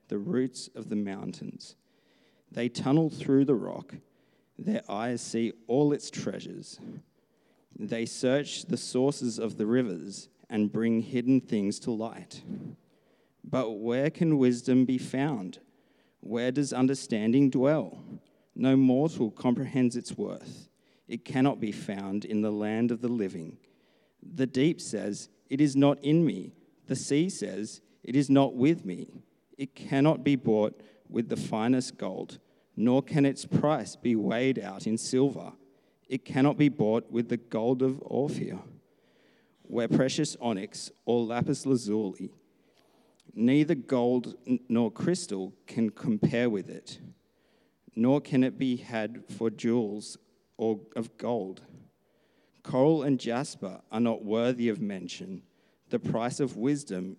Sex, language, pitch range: male, English, 115-140 Hz